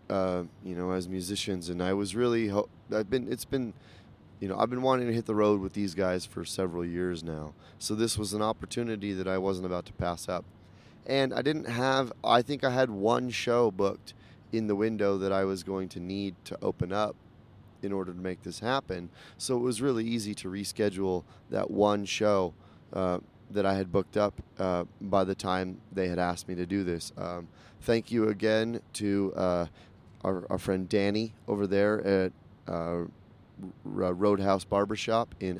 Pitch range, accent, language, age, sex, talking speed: 95-110 Hz, American, English, 20-39, male, 190 wpm